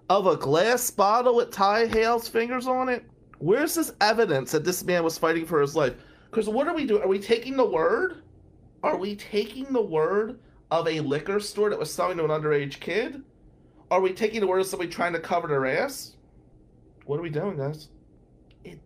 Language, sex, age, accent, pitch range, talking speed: English, male, 30-49, American, 115-195 Hz, 205 wpm